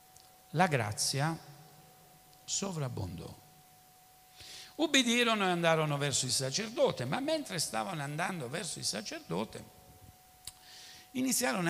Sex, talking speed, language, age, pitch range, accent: male, 85 wpm, Italian, 60-79, 125-170 Hz, native